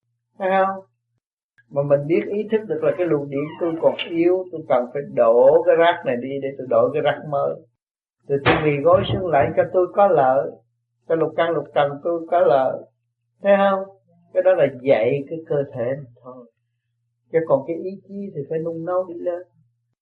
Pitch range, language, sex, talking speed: 120-170 Hz, Vietnamese, male, 200 wpm